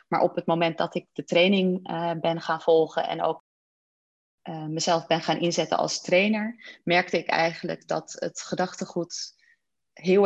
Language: Dutch